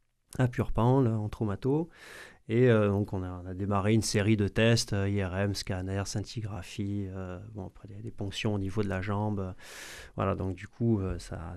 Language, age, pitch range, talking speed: French, 30-49, 100-115 Hz, 180 wpm